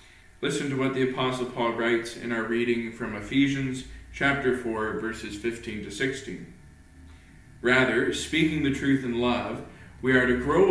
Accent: American